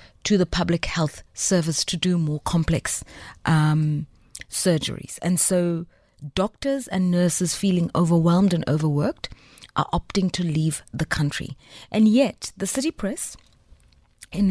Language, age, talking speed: English, 30-49, 130 wpm